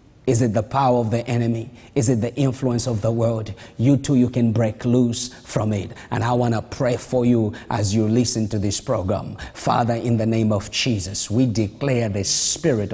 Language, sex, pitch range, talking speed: English, male, 110-140 Hz, 210 wpm